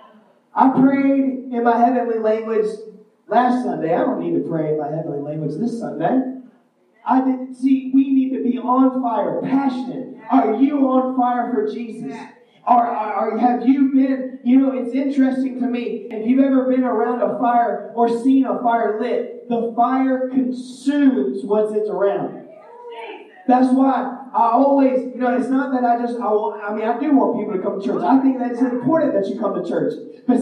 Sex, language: male, English